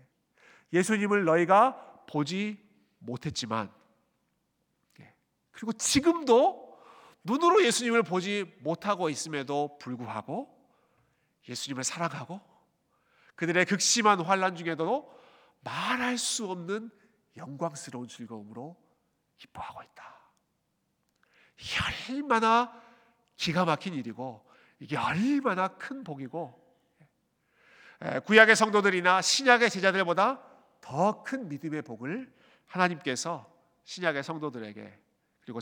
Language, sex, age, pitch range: Korean, male, 40-59, 145-225 Hz